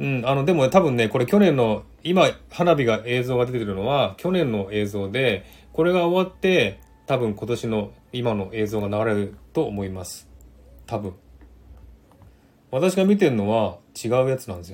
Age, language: 30-49, Japanese